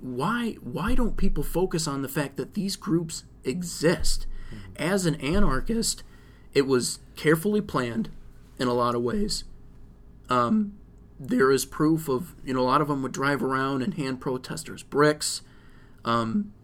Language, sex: English, male